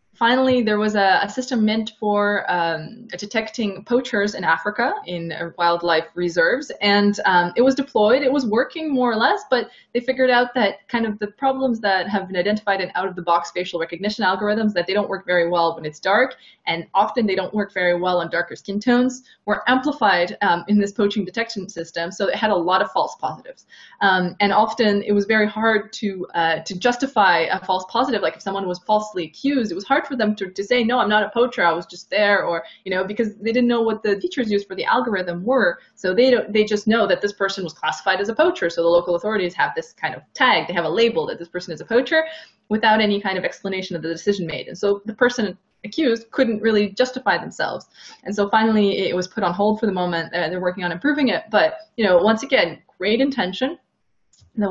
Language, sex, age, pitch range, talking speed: English, female, 20-39, 180-240 Hz, 230 wpm